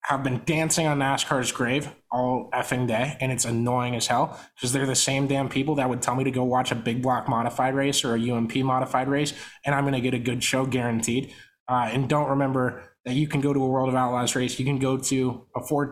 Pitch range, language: 125-150 Hz, English